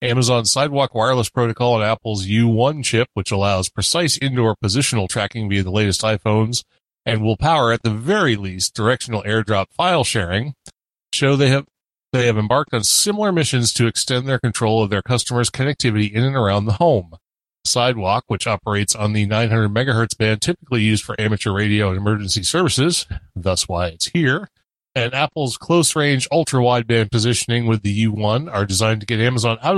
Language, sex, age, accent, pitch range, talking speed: English, male, 30-49, American, 105-130 Hz, 170 wpm